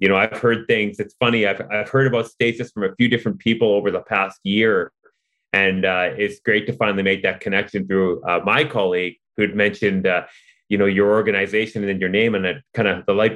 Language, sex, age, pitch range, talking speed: English, male, 30-49, 105-145 Hz, 235 wpm